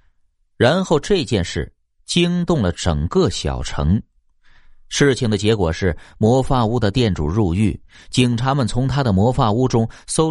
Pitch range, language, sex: 90-130 Hz, Chinese, male